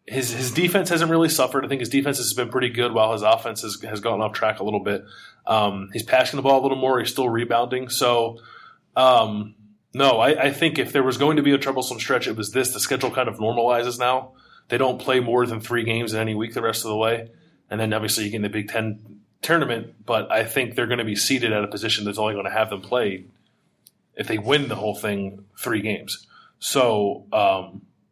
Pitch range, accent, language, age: 105-130 Hz, American, English, 20-39